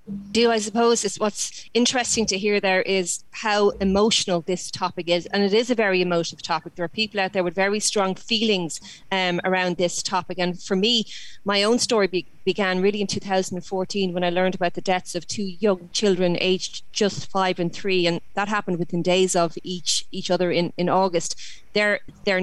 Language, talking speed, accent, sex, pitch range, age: English, 200 wpm, Irish, female, 175-205 Hz, 30-49